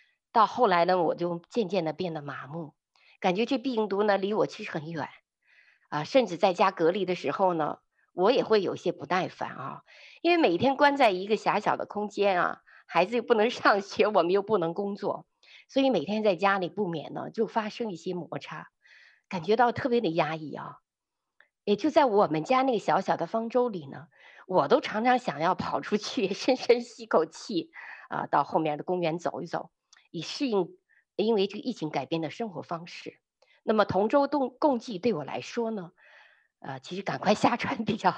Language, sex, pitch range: Chinese, female, 165-230 Hz